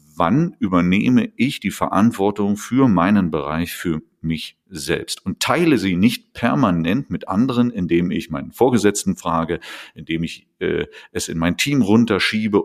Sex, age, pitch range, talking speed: male, 40-59, 85-110 Hz, 145 wpm